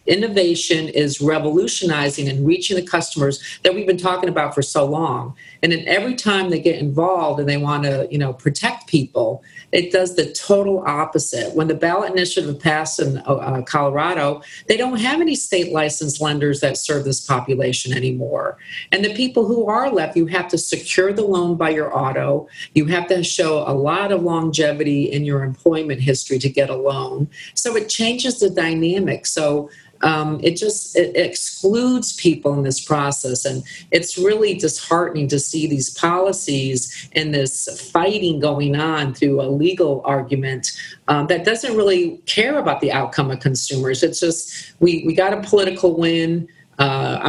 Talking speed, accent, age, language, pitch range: 170 wpm, American, 50-69, English, 145-185 Hz